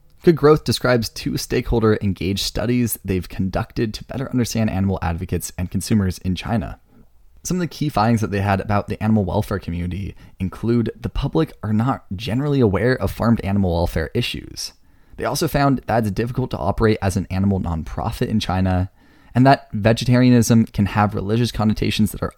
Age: 20-39